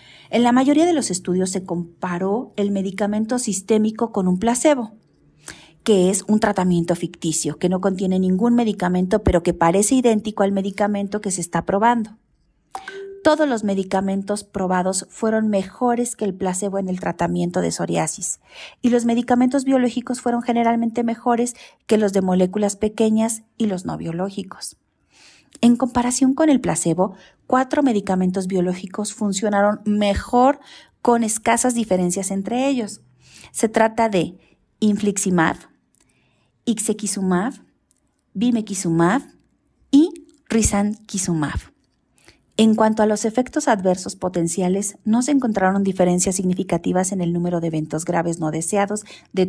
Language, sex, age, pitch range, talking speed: Spanish, female, 40-59, 185-230 Hz, 130 wpm